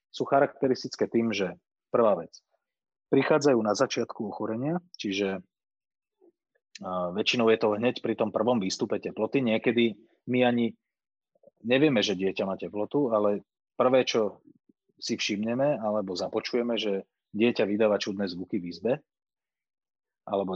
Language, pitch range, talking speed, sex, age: Slovak, 100-130 Hz, 125 wpm, male, 30-49